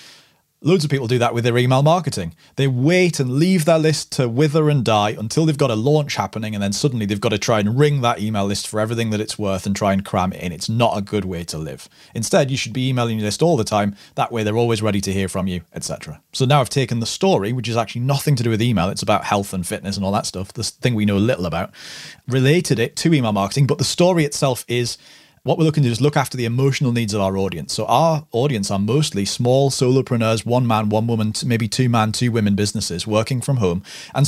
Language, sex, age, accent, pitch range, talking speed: English, male, 30-49, British, 105-140 Hz, 260 wpm